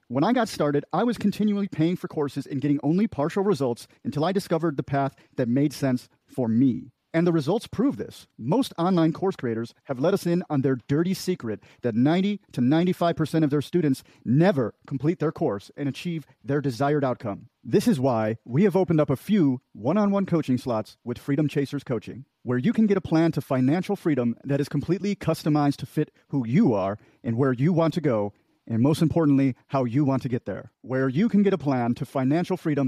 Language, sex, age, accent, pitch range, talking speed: English, male, 40-59, American, 135-175 Hz, 210 wpm